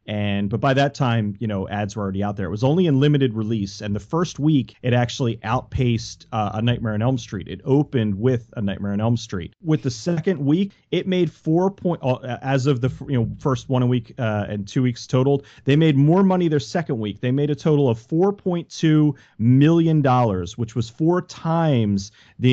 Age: 30-49